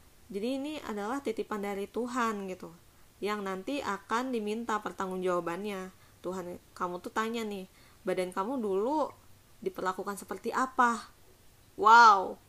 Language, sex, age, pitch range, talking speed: Indonesian, female, 20-39, 195-240 Hz, 120 wpm